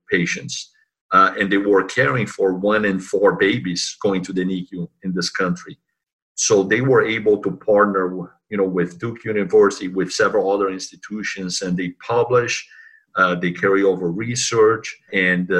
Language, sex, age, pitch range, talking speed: English, male, 40-59, 95-120 Hz, 155 wpm